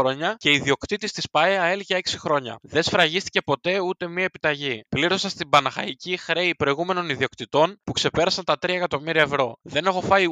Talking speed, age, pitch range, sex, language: 165 wpm, 20-39, 140-185 Hz, male, Greek